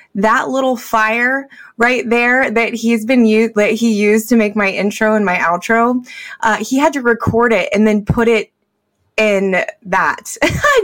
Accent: American